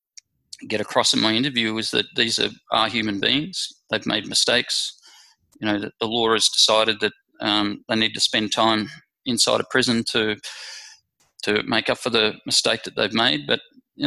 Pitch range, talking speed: 110-130 Hz, 190 wpm